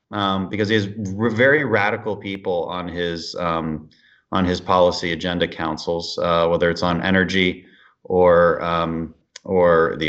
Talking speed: 150 wpm